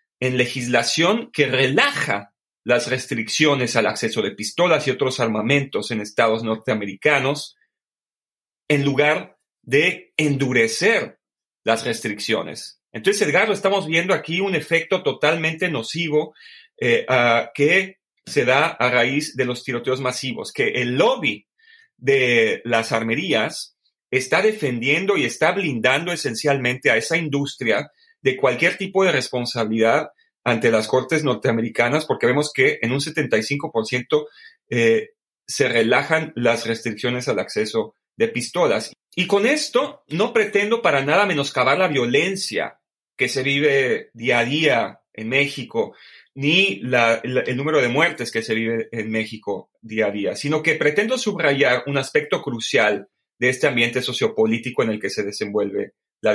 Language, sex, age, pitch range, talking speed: Spanish, male, 40-59, 120-190 Hz, 140 wpm